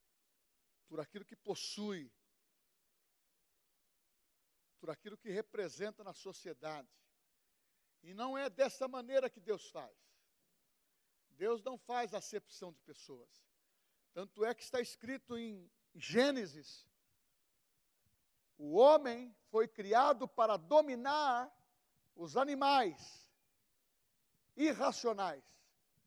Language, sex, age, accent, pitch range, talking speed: Portuguese, male, 60-79, Brazilian, 200-260 Hz, 90 wpm